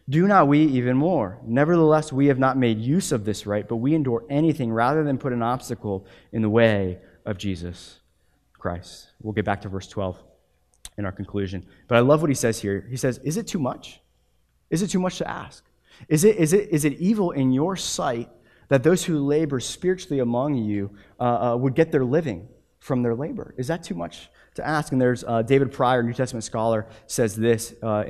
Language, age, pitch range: English, 20-39, 115-160 Hz